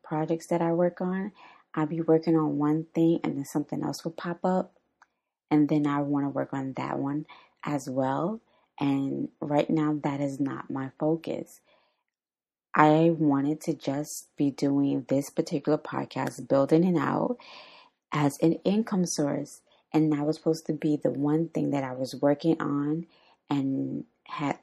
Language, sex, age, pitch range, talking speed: English, female, 20-39, 145-165 Hz, 170 wpm